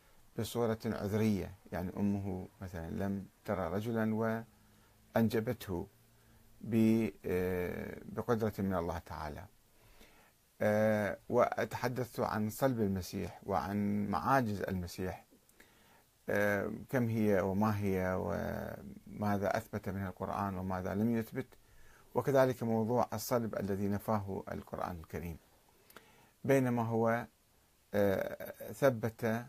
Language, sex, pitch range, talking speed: Arabic, male, 100-120 Hz, 85 wpm